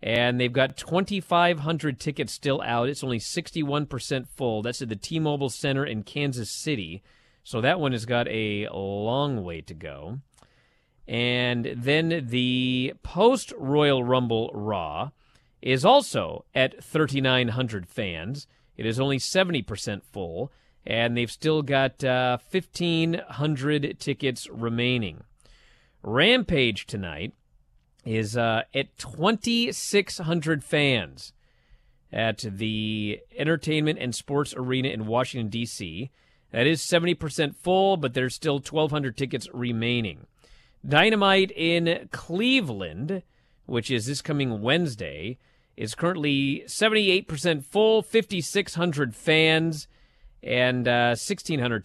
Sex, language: male, English